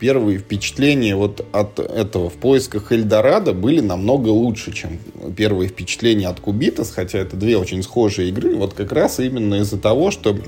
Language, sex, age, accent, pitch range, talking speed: Russian, male, 20-39, native, 105-125 Hz, 165 wpm